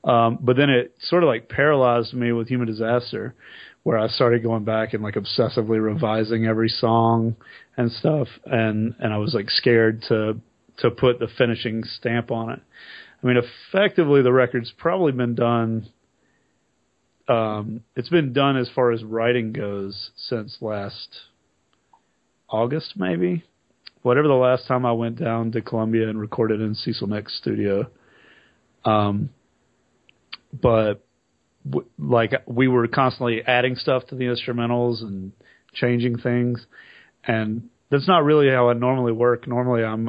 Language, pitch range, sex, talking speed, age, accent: English, 110-125 Hz, male, 150 wpm, 30-49, American